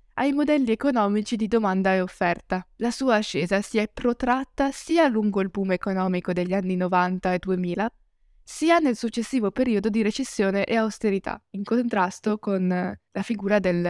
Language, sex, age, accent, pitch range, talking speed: Italian, female, 20-39, native, 190-235 Hz, 160 wpm